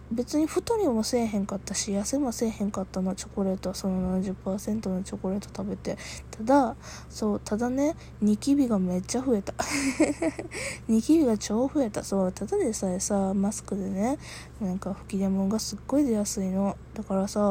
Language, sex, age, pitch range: Japanese, female, 20-39, 190-235 Hz